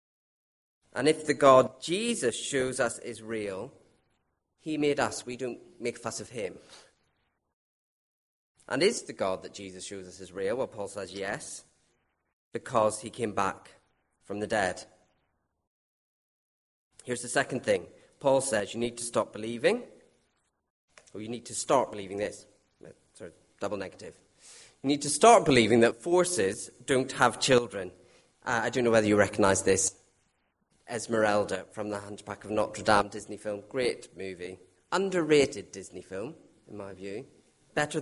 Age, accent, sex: 30-49, British, male